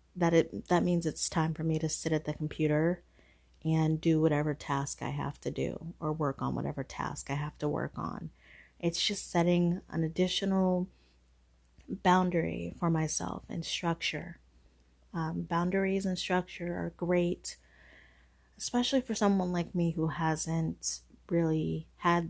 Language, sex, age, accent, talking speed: English, female, 30-49, American, 150 wpm